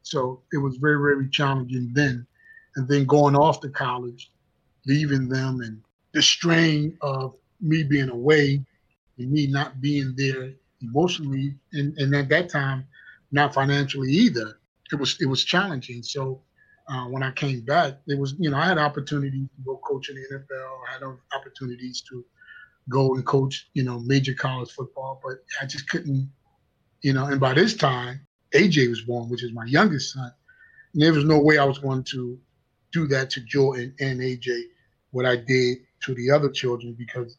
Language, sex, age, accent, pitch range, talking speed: English, male, 30-49, American, 125-140 Hz, 180 wpm